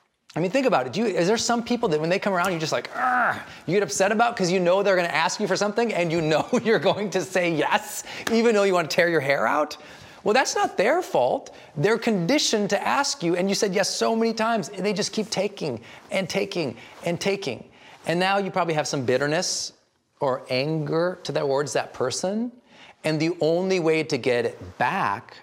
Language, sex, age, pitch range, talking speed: English, male, 30-49, 130-195 Hz, 225 wpm